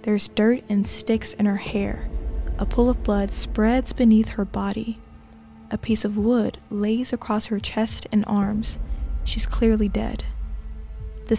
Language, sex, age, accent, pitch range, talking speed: English, female, 10-29, American, 205-225 Hz, 155 wpm